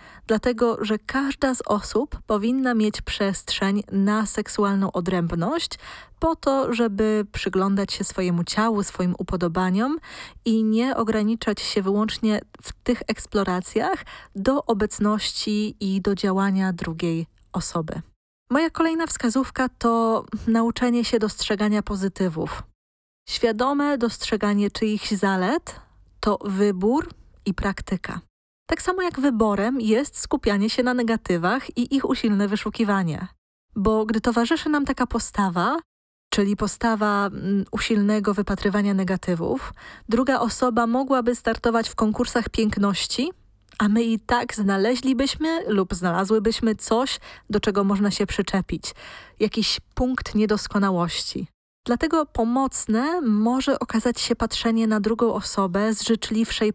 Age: 20-39